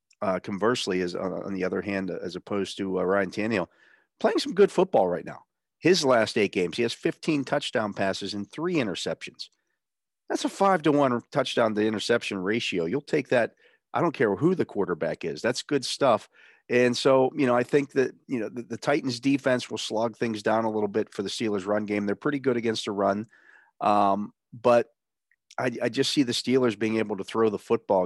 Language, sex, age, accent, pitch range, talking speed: English, male, 40-59, American, 100-120 Hz, 210 wpm